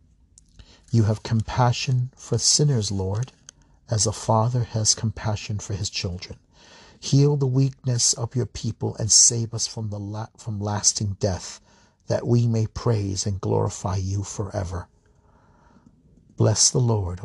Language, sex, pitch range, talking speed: English, male, 95-115 Hz, 135 wpm